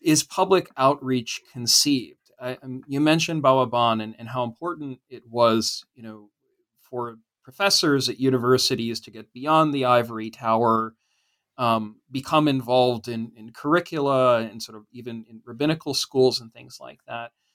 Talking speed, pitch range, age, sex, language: 145 wpm, 120-150 Hz, 40-59, male, English